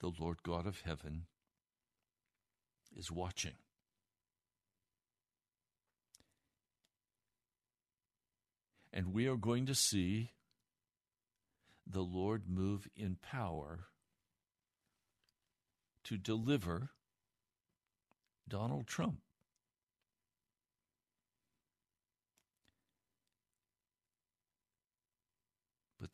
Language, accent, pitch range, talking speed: English, American, 90-115 Hz, 55 wpm